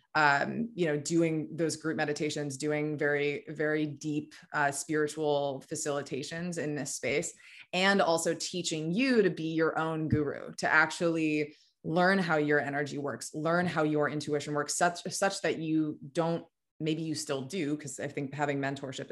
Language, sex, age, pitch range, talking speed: English, female, 20-39, 145-165 Hz, 165 wpm